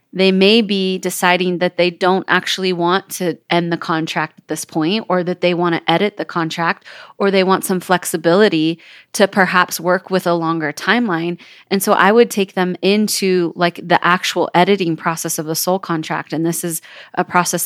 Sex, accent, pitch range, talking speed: female, American, 175-200 Hz, 195 wpm